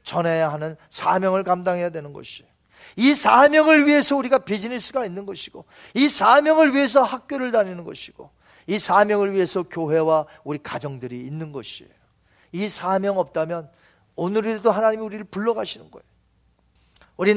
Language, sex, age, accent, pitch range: Korean, male, 40-59, native, 165-235 Hz